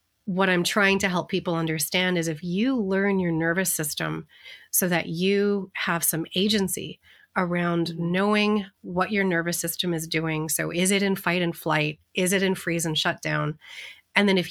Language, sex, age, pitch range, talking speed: English, female, 30-49, 165-195 Hz, 180 wpm